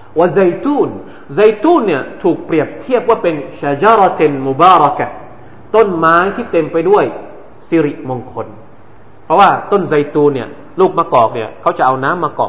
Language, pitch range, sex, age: Thai, 130-200 Hz, male, 30-49